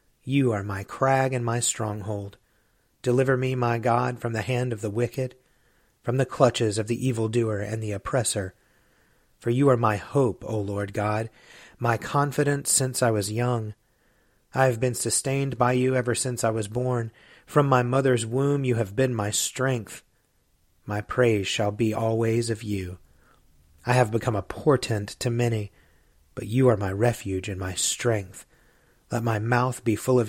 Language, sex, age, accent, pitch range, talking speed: English, male, 30-49, American, 105-125 Hz, 175 wpm